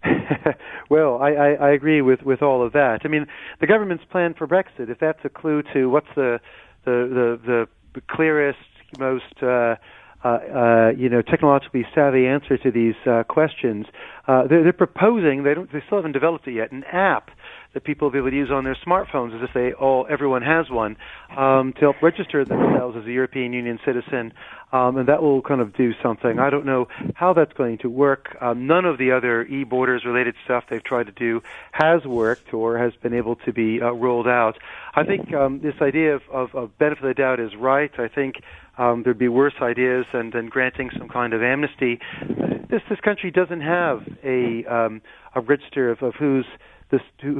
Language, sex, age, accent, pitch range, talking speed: English, male, 40-59, American, 120-145 Hz, 205 wpm